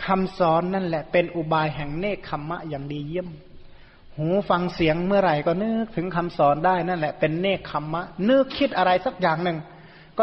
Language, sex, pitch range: Thai, male, 165-200 Hz